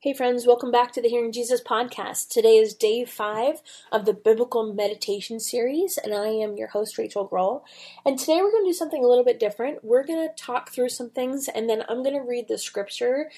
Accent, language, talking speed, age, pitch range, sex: American, English, 220 wpm, 20-39, 200-255 Hz, female